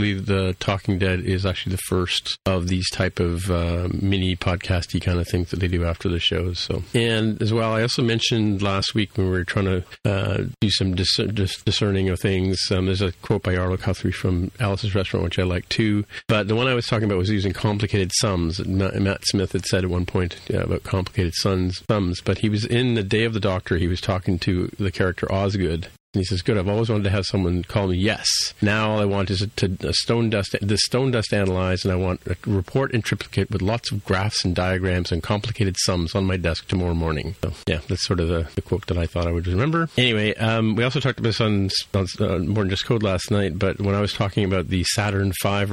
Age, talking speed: 40-59, 240 wpm